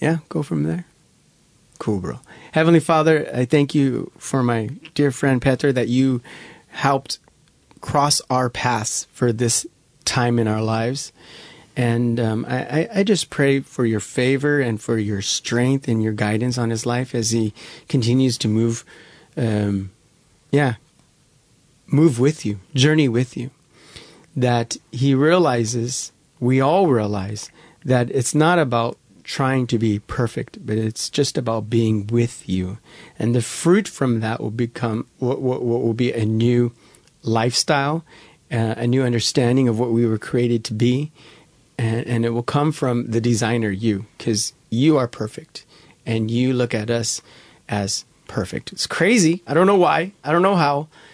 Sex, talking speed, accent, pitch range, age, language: male, 160 wpm, American, 115-145 Hz, 30-49, English